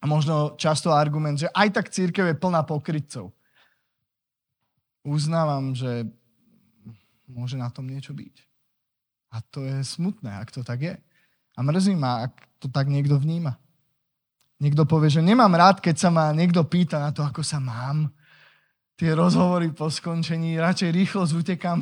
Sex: male